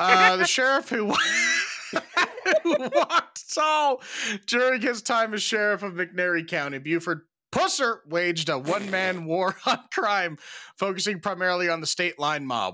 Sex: male